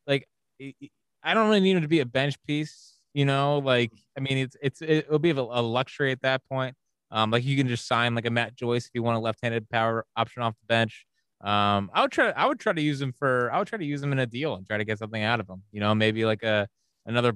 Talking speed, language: 275 wpm, English